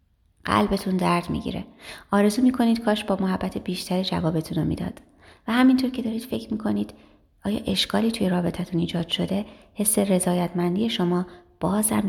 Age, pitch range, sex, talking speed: 30-49, 160-205 Hz, female, 145 wpm